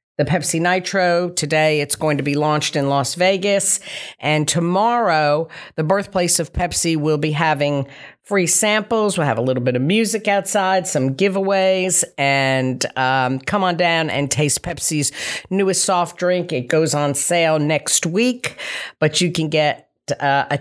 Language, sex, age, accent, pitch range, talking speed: English, female, 50-69, American, 145-190 Hz, 165 wpm